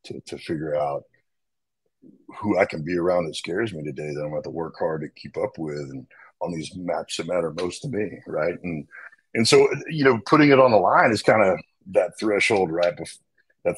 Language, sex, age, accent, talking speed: English, male, 40-59, American, 225 wpm